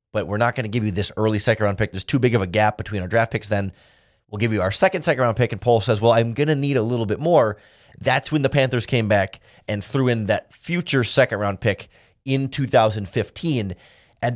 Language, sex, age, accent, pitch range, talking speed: English, male, 30-49, American, 105-135 Hz, 250 wpm